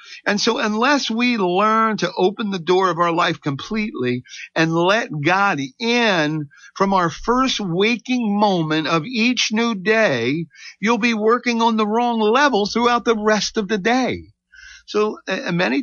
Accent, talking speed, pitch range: American, 160 wpm, 145-215 Hz